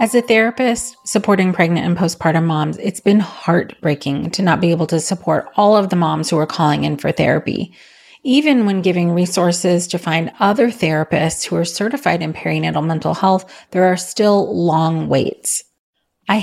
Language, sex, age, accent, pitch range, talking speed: English, female, 30-49, American, 160-200 Hz, 175 wpm